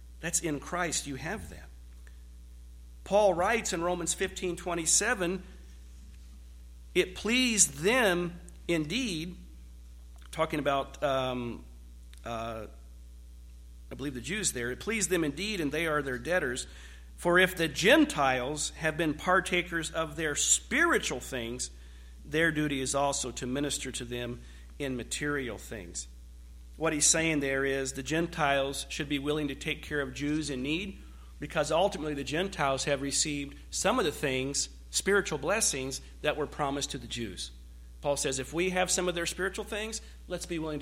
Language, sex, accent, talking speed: English, male, American, 155 wpm